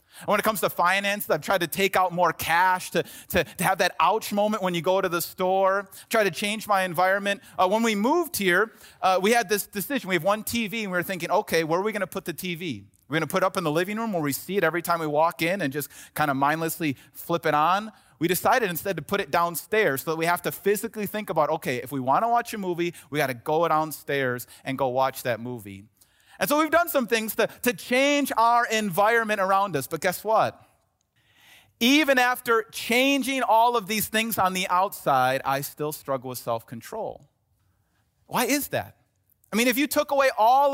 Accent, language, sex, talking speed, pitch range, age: American, English, male, 235 wpm, 160-225 Hz, 30-49